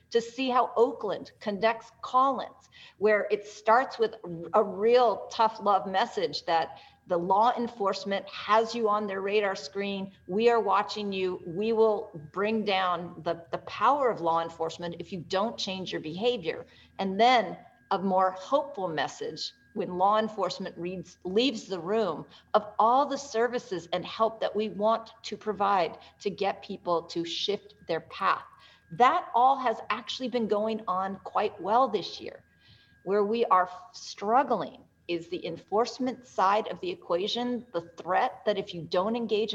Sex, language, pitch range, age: female, English, 175-225 Hz, 50-69